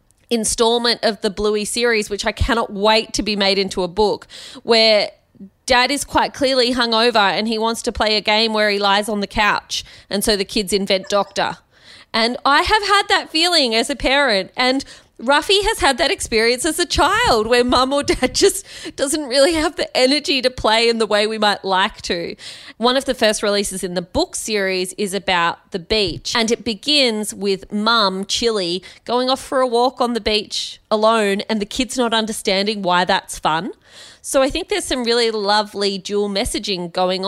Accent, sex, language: Australian, female, English